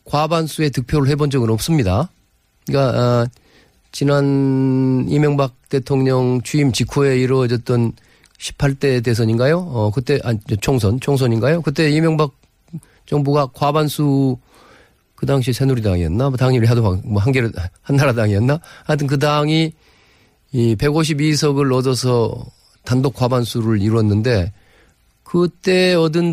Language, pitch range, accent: Korean, 110-150 Hz, native